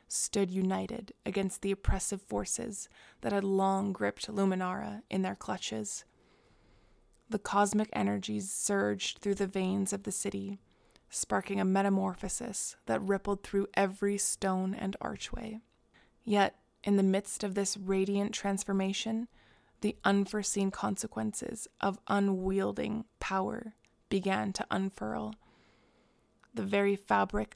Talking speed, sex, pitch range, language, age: 120 wpm, female, 190-205 Hz, English, 20-39